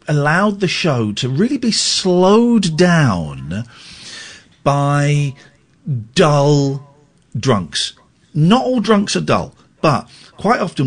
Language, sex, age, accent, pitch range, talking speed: English, male, 50-69, British, 120-180 Hz, 105 wpm